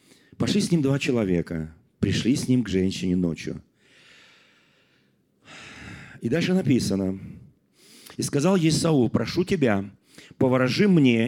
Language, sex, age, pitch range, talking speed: Russian, male, 40-59, 120-195 Hz, 110 wpm